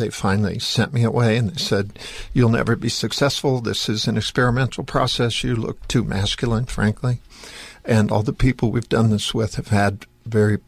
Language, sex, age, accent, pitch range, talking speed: English, male, 50-69, American, 105-125 Hz, 185 wpm